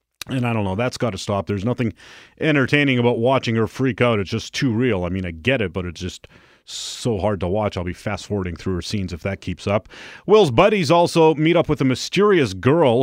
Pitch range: 110-140 Hz